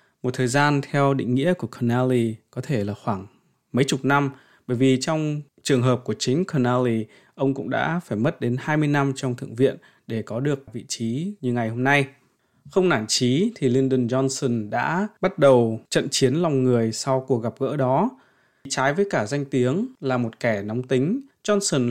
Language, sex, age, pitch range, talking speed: Vietnamese, male, 20-39, 120-150 Hz, 195 wpm